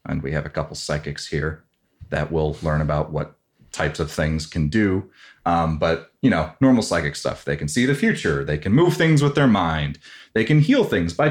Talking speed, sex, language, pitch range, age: 220 wpm, male, English, 80-105 Hz, 30-49